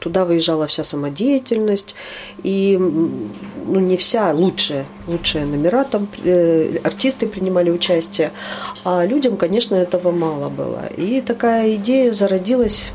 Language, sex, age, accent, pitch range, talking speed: Russian, female, 40-59, native, 165-210 Hz, 120 wpm